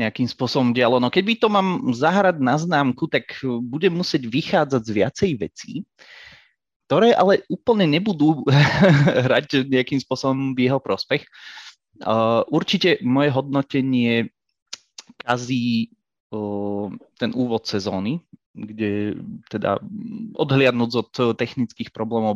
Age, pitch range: 30-49, 110-150 Hz